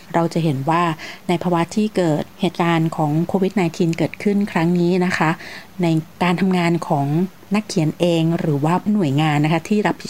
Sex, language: female, Thai